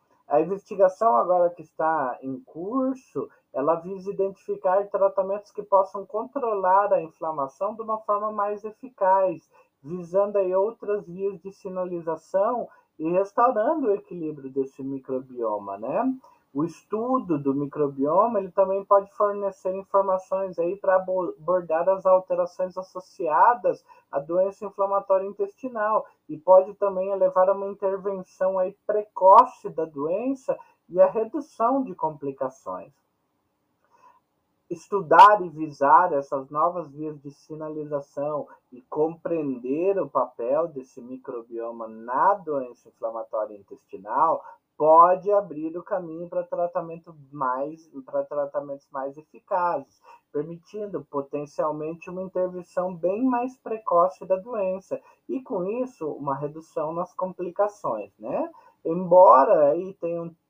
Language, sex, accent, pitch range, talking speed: Portuguese, male, Brazilian, 155-200 Hz, 115 wpm